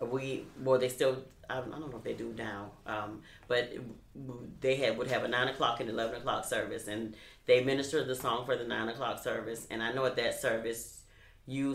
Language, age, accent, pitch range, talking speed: English, 40-59, American, 115-135 Hz, 210 wpm